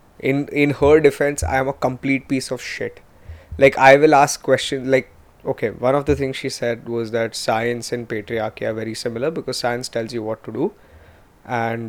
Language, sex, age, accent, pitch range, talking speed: English, male, 20-39, Indian, 110-140 Hz, 200 wpm